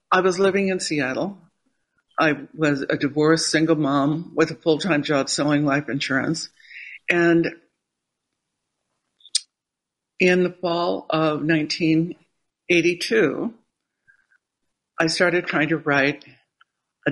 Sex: female